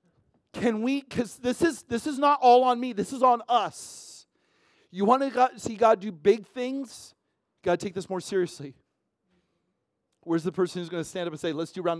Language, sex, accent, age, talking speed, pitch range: English, male, American, 40-59, 215 wpm, 150-220 Hz